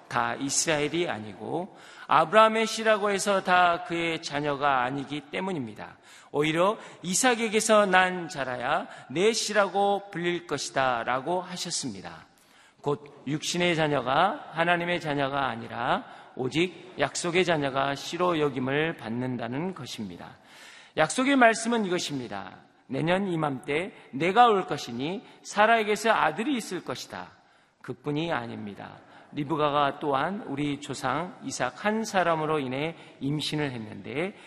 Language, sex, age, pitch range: Korean, male, 40-59, 135-190 Hz